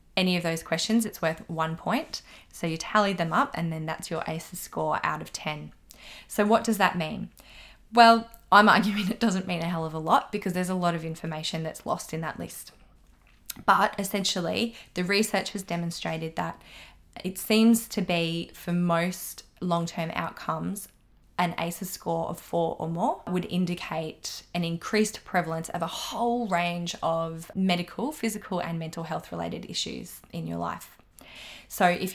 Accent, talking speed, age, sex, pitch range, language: Australian, 175 wpm, 20-39, female, 165-195 Hz, English